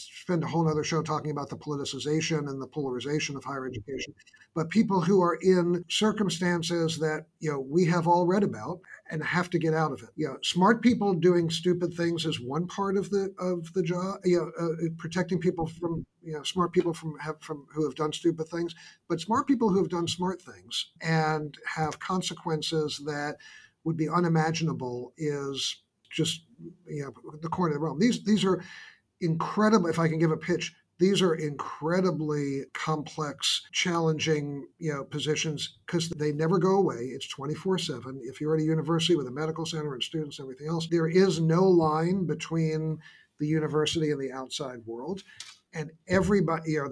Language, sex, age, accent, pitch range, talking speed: English, male, 50-69, American, 150-175 Hz, 190 wpm